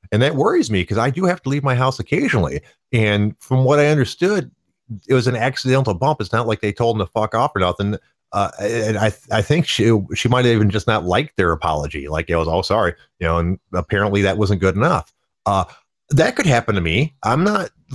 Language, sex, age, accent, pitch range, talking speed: English, male, 30-49, American, 100-130 Hz, 235 wpm